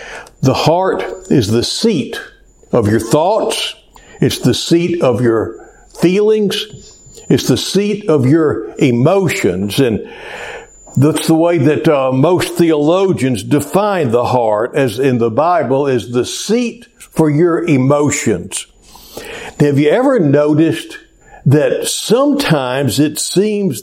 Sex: male